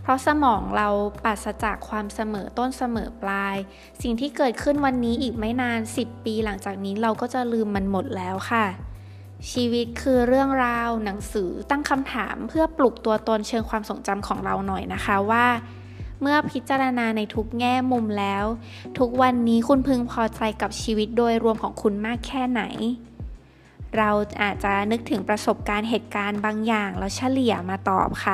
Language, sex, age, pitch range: Thai, female, 20-39, 205-245 Hz